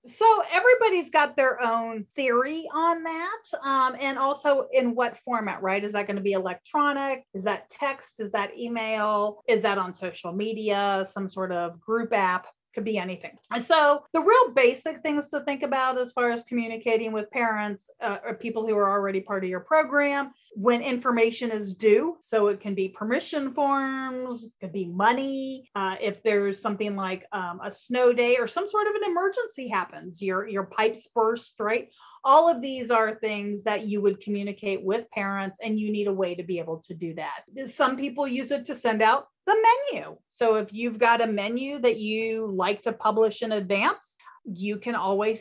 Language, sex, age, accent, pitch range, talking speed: English, female, 30-49, American, 205-265 Hz, 190 wpm